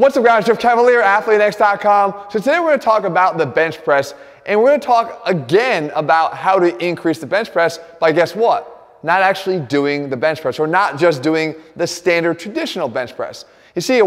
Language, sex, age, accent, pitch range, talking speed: English, male, 20-39, American, 160-215 Hz, 215 wpm